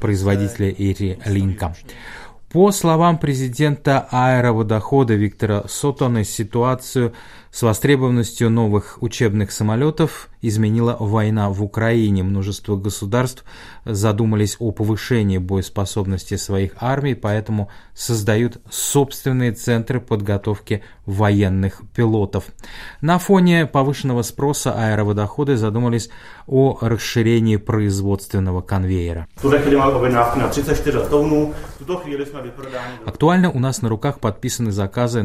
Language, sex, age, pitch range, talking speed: Russian, male, 20-39, 100-130 Hz, 85 wpm